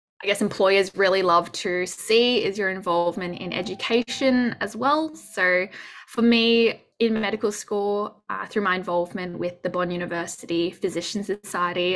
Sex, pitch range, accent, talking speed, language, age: female, 175-220 Hz, Australian, 150 wpm, English, 10-29